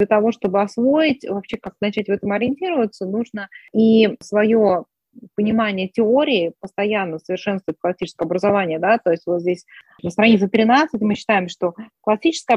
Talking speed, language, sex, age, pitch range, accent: 150 wpm, Russian, female, 20-39, 195-225 Hz, native